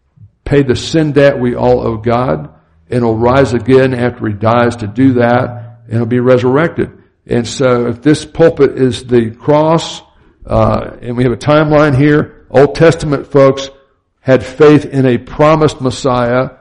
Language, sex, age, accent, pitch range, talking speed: English, male, 60-79, American, 115-135 Hz, 165 wpm